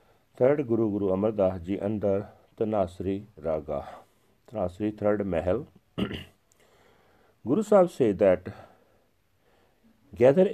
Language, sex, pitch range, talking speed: Punjabi, male, 95-130 Hz, 90 wpm